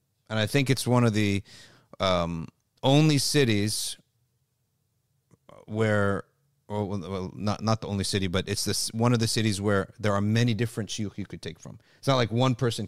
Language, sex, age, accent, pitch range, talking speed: English, male, 40-59, American, 105-130 Hz, 185 wpm